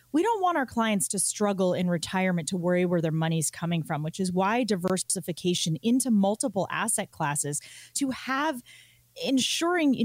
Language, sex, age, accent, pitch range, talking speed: English, female, 30-49, American, 175-235 Hz, 165 wpm